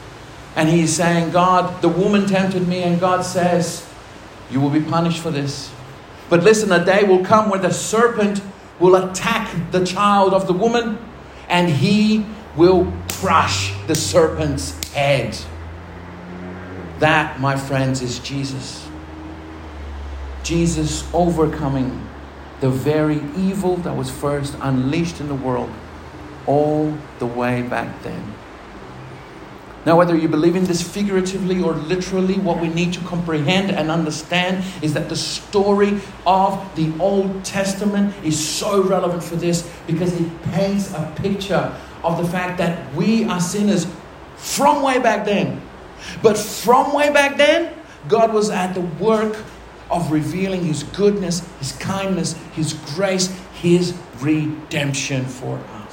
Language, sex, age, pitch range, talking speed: English, male, 50-69, 140-190 Hz, 140 wpm